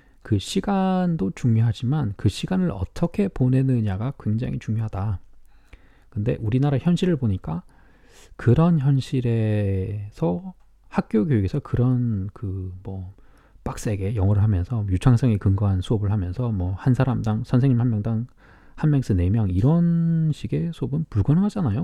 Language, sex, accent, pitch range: Korean, male, native, 105-160 Hz